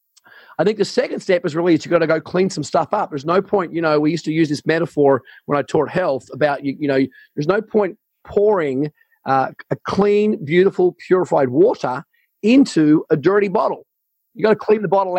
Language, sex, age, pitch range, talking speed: English, male, 40-59, 140-185 Hz, 215 wpm